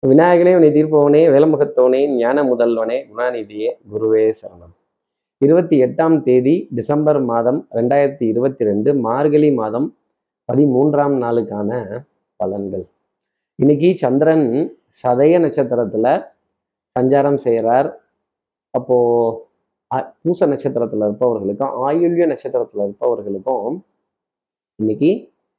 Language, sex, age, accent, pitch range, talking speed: Tamil, male, 30-49, native, 115-145 Hz, 80 wpm